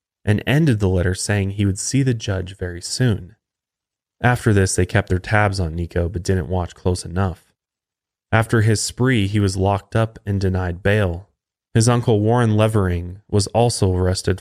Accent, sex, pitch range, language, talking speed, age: American, male, 95-115 Hz, English, 175 wpm, 20-39